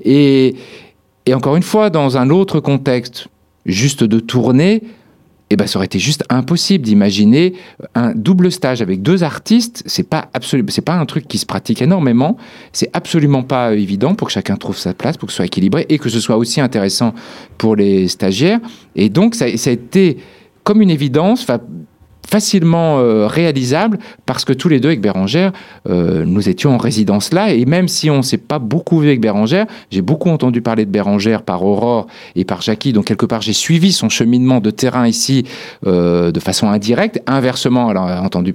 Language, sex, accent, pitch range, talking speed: French, male, French, 110-175 Hz, 195 wpm